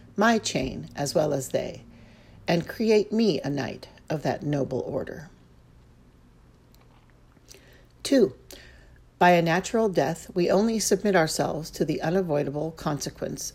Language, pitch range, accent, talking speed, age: English, 135-190 Hz, American, 125 wpm, 50-69